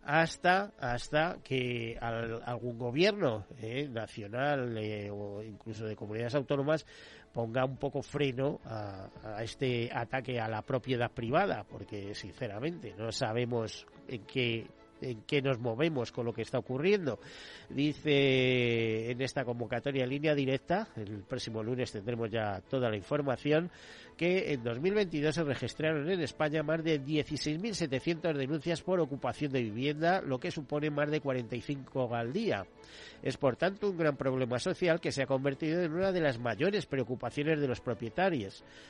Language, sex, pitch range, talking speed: Spanish, male, 115-150 Hz, 150 wpm